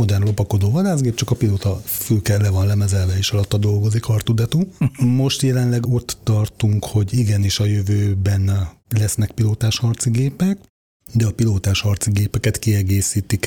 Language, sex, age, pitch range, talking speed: Hungarian, male, 30-49, 100-115 Hz, 135 wpm